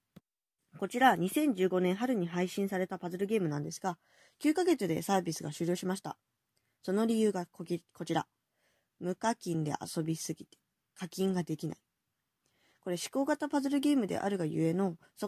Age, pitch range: 20-39, 170-235 Hz